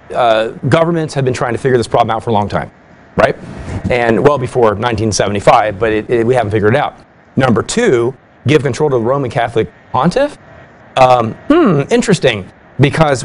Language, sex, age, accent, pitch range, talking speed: English, male, 30-49, American, 115-140 Hz, 180 wpm